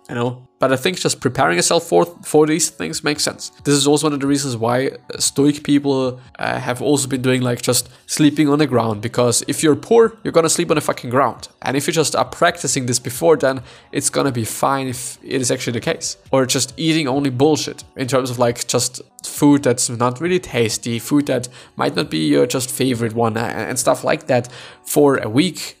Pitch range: 125-155 Hz